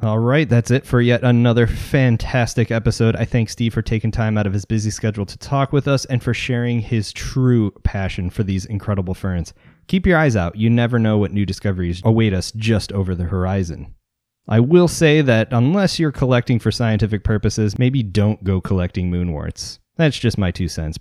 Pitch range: 95-120 Hz